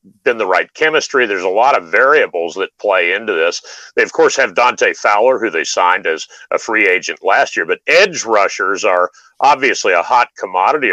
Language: English